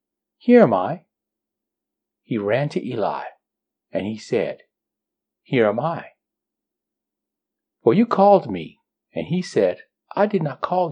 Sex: male